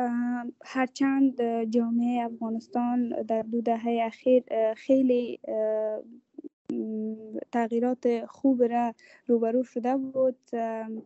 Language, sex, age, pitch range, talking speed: English, female, 10-29, 235-255 Hz, 70 wpm